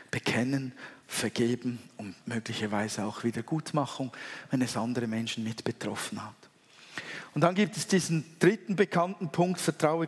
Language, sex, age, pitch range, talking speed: German, male, 50-69, 125-160 Hz, 130 wpm